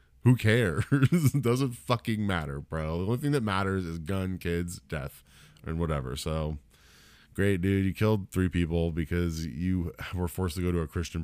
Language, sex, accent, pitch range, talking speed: English, male, American, 85-120 Hz, 180 wpm